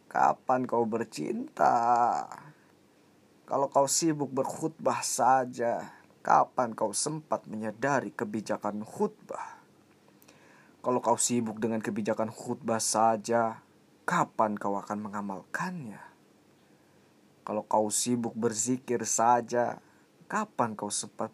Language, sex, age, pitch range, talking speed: Indonesian, male, 20-39, 110-130 Hz, 95 wpm